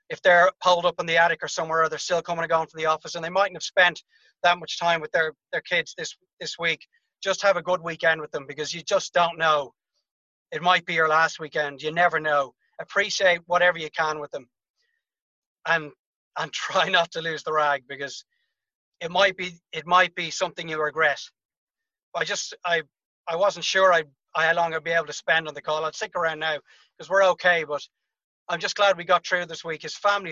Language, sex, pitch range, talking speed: English, male, 155-180 Hz, 225 wpm